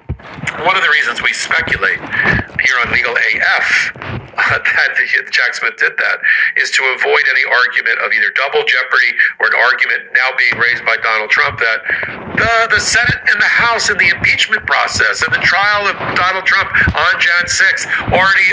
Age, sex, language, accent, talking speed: 50-69, male, English, American, 185 wpm